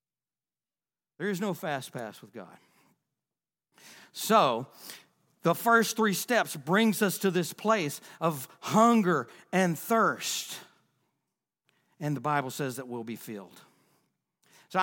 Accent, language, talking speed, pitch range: American, English, 120 wpm, 150-235 Hz